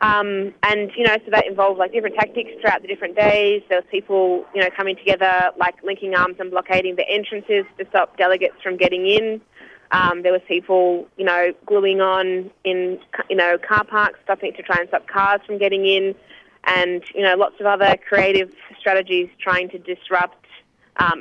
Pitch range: 180-200 Hz